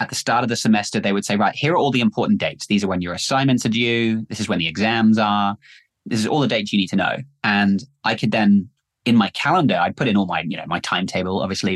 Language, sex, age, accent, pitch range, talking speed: English, male, 20-39, British, 95-115 Hz, 280 wpm